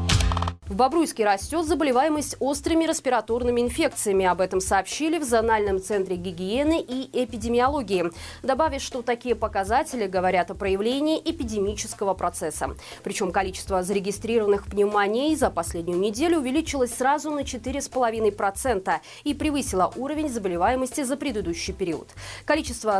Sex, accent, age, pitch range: female, native, 20-39, 195-275 Hz